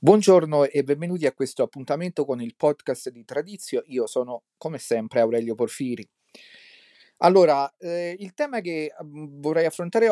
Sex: male